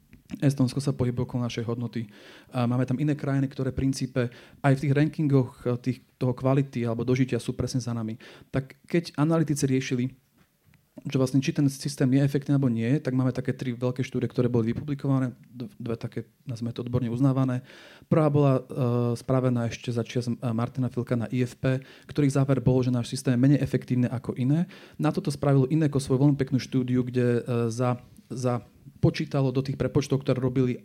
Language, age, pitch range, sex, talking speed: Slovak, 30-49, 120-135 Hz, male, 185 wpm